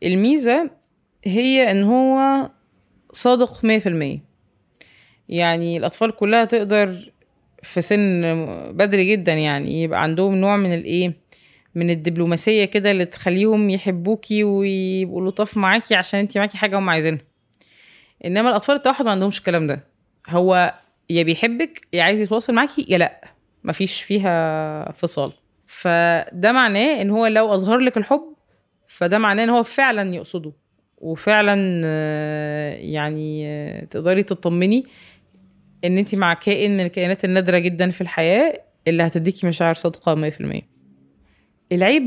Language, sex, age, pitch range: Arabic, female, 20-39, 170-220 Hz